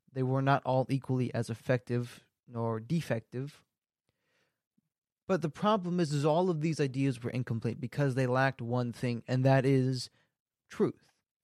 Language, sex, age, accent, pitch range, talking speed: English, male, 20-39, American, 125-160 Hz, 150 wpm